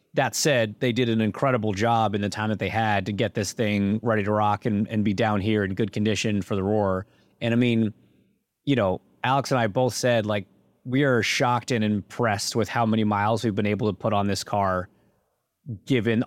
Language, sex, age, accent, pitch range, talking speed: English, male, 30-49, American, 100-125 Hz, 220 wpm